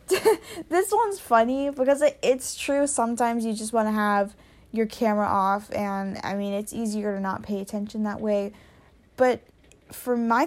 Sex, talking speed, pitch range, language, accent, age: female, 165 wpm, 200-230 Hz, English, American, 10-29